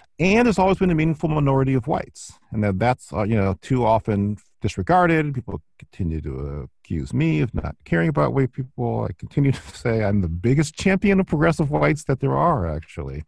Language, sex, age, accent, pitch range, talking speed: English, male, 40-59, American, 95-150 Hz, 190 wpm